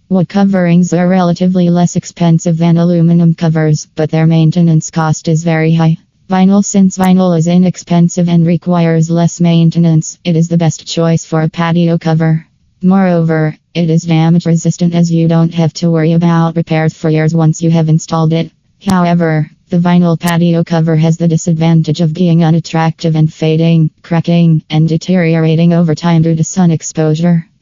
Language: English